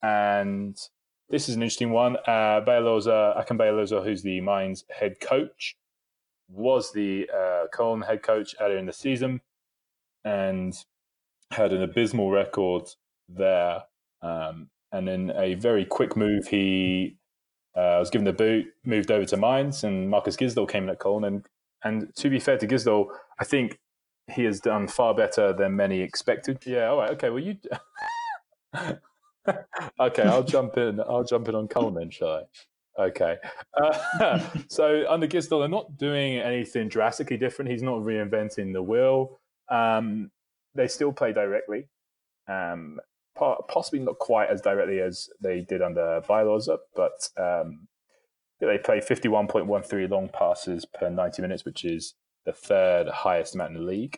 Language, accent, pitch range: English, British, 95-140 Hz